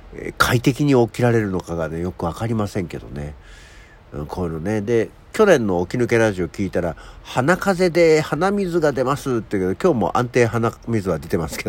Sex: male